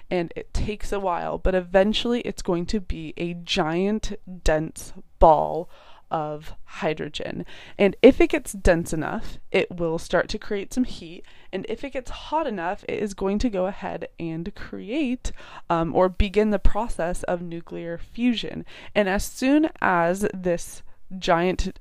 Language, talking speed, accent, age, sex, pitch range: English, 160 wpm, American, 20-39, female, 170-215 Hz